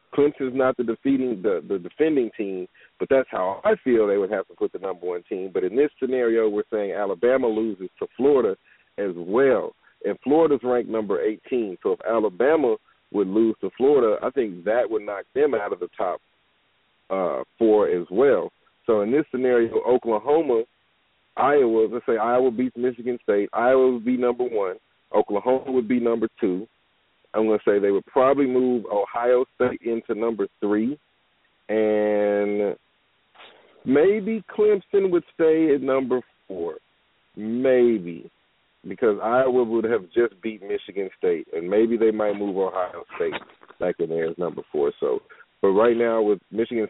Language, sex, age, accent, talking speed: English, male, 40-59, American, 170 wpm